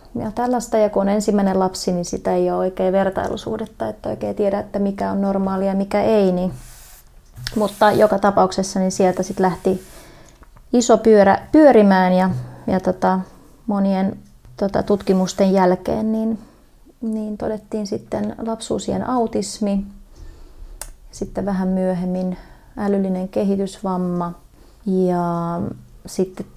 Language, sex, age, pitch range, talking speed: Finnish, female, 30-49, 180-210 Hz, 120 wpm